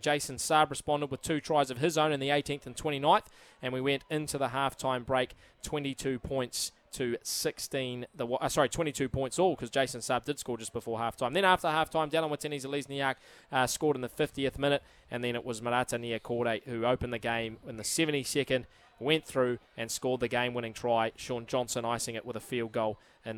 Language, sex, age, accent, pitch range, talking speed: English, male, 20-39, Australian, 125-150 Hz, 205 wpm